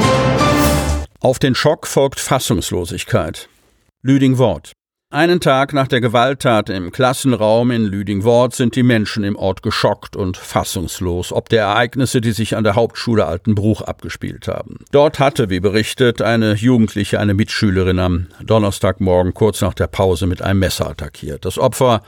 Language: German